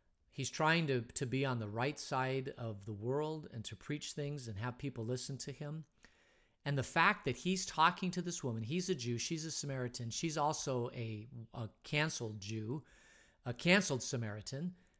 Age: 50-69